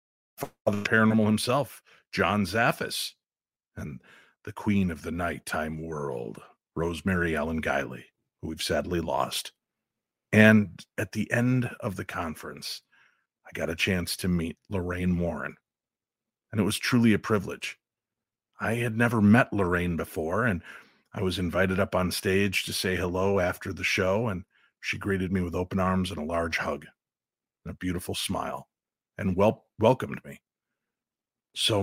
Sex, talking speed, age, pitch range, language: male, 145 wpm, 50-69, 90-110 Hz, English